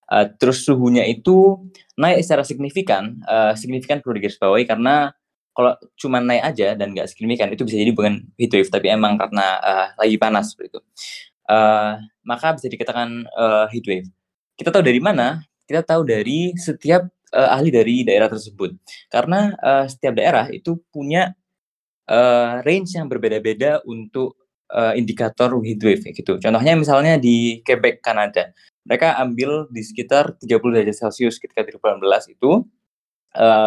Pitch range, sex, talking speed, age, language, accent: 110-150 Hz, male, 145 wpm, 20-39, Indonesian, native